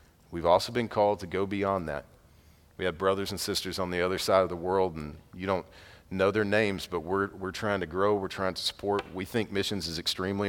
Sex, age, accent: male, 40-59, American